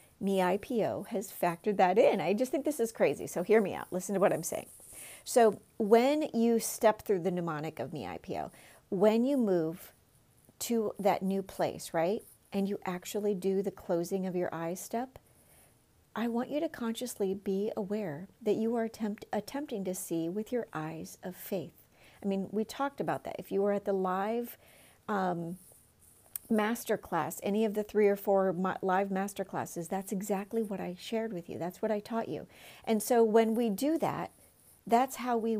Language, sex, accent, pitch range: English, female, American, 185-235 Hz